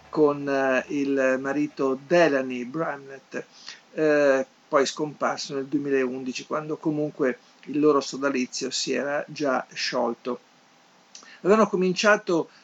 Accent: native